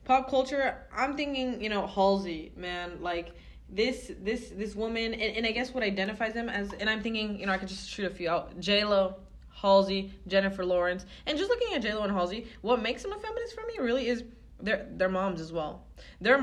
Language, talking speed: English, 215 wpm